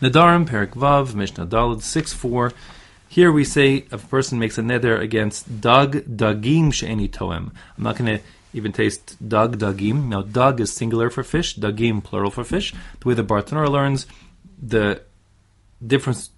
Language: English